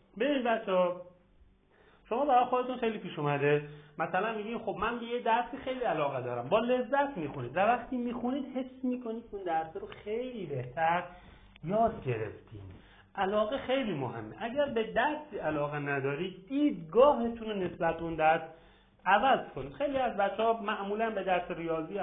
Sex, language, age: male, Persian, 40-59